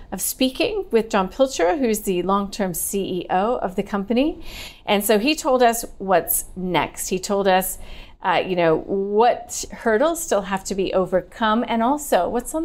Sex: female